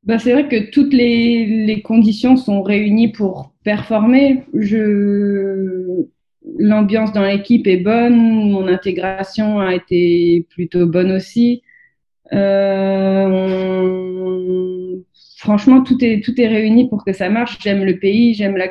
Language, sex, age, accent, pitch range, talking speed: French, female, 20-39, French, 180-215 Hz, 130 wpm